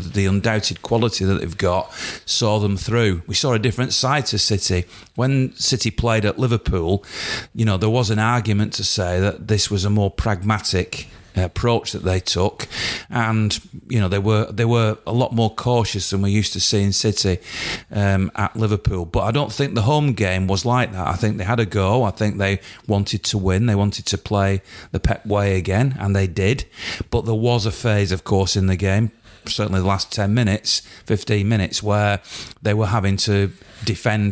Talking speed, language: 205 wpm, English